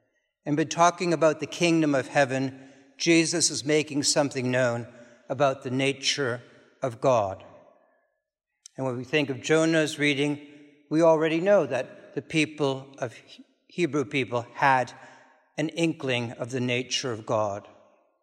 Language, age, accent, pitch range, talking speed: English, 60-79, American, 135-165 Hz, 140 wpm